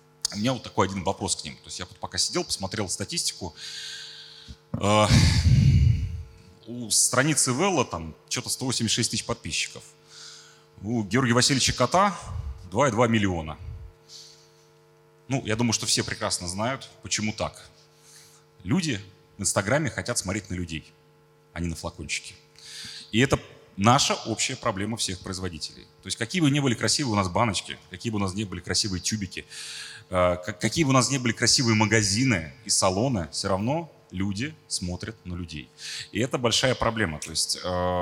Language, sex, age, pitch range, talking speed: Russian, male, 30-49, 90-125 Hz, 155 wpm